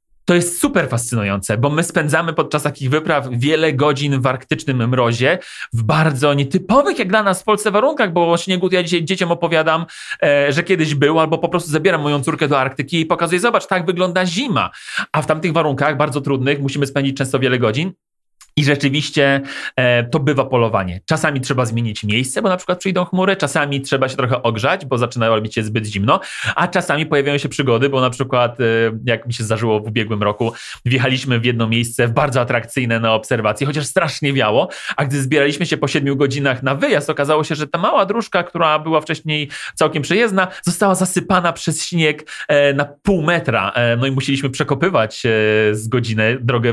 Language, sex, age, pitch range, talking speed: Polish, male, 40-59, 125-170 Hz, 195 wpm